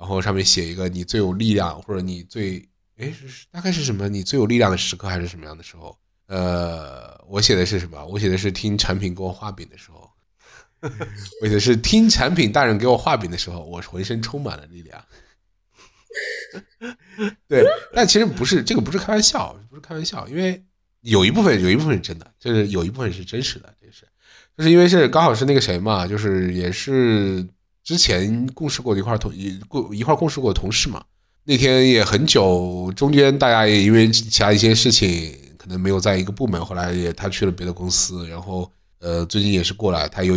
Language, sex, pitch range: Chinese, male, 90-115 Hz